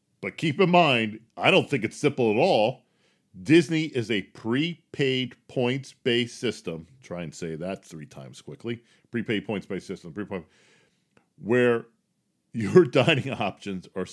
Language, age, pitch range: English, 40-59, 90-125 Hz